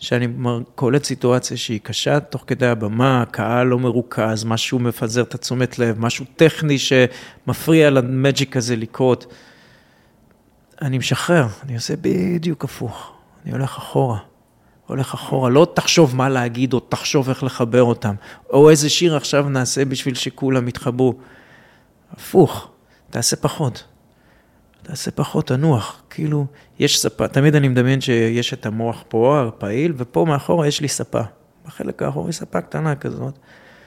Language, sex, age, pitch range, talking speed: Hebrew, male, 30-49, 120-155 Hz, 140 wpm